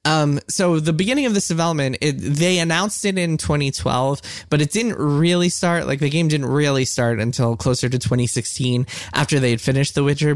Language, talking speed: English, 185 wpm